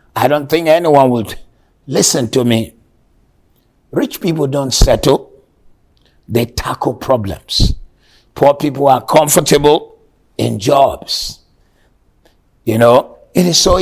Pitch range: 125-150 Hz